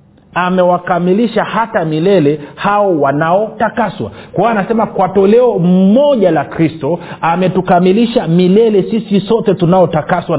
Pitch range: 155-205 Hz